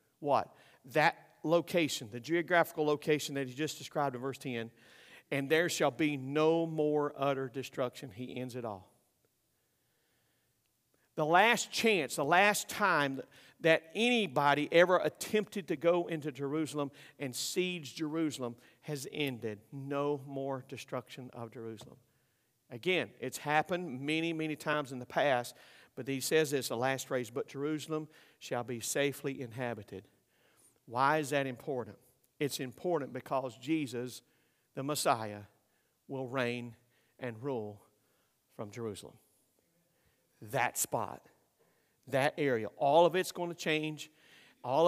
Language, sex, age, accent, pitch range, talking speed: English, male, 50-69, American, 130-155 Hz, 130 wpm